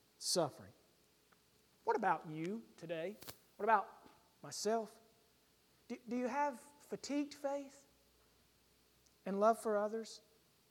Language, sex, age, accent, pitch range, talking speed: English, male, 40-59, American, 170-240 Hz, 100 wpm